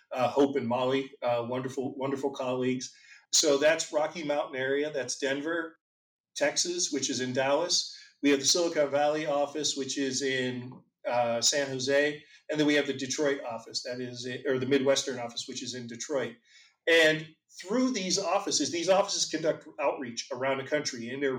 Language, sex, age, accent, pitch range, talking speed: English, male, 40-59, American, 135-160 Hz, 175 wpm